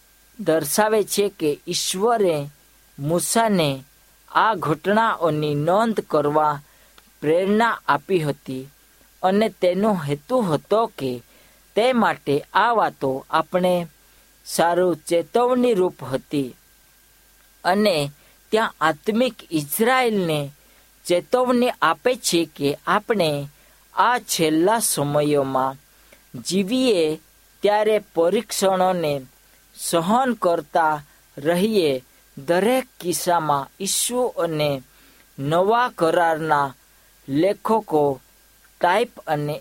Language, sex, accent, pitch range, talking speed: Hindi, female, native, 150-215 Hz, 50 wpm